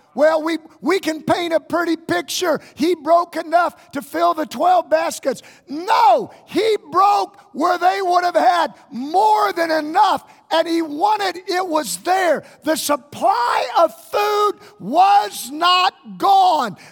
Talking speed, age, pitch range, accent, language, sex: 140 wpm, 50-69, 210-350 Hz, American, English, male